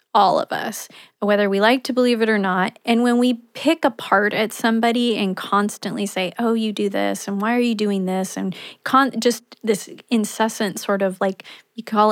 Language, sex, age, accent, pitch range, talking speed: English, female, 30-49, American, 200-245 Hz, 200 wpm